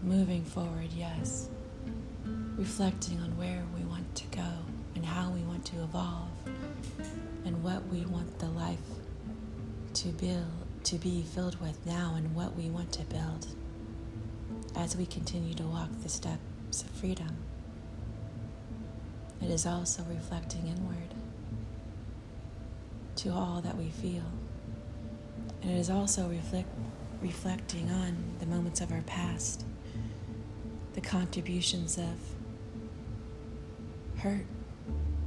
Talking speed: 115 wpm